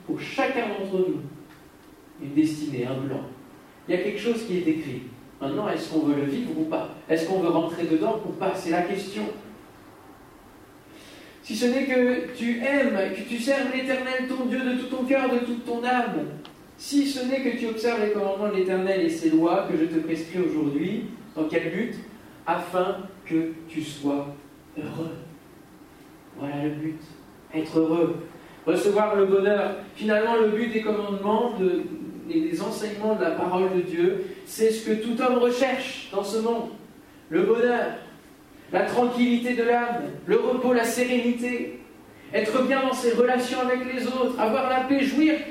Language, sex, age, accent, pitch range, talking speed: French, male, 40-59, French, 175-255 Hz, 175 wpm